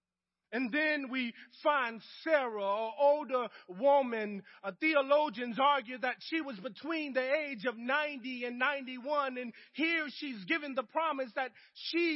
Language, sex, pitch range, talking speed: English, male, 210-275 Hz, 140 wpm